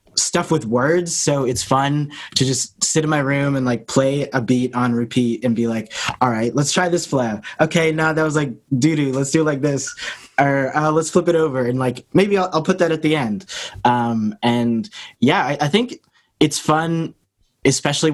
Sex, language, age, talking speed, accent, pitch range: male, English, 20-39, 210 wpm, American, 125-160 Hz